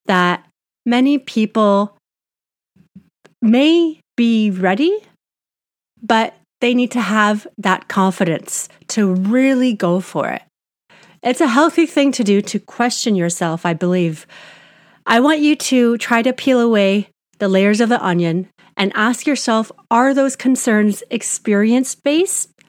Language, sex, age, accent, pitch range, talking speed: English, female, 30-49, American, 190-245 Hz, 130 wpm